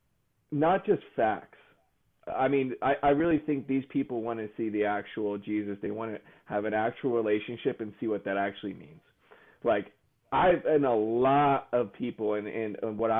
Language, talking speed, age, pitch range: English, 175 wpm, 30-49, 105-125 Hz